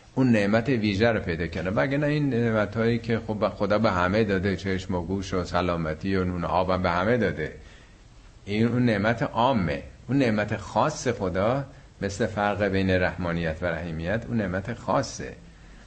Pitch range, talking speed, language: 90-125 Hz, 165 wpm, Persian